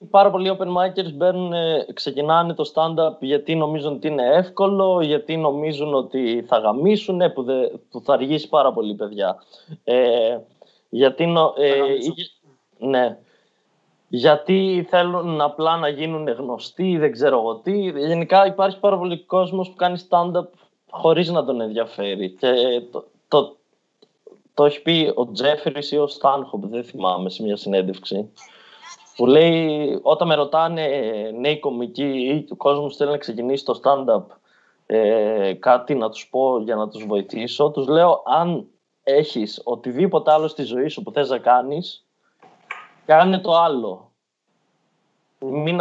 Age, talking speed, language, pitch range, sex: 20-39, 145 wpm, Greek, 130-175 Hz, male